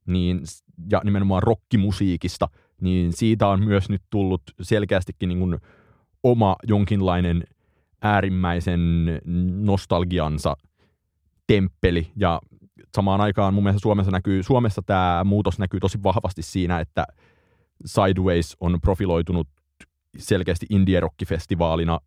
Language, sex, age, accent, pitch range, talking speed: Finnish, male, 30-49, native, 85-100 Hz, 90 wpm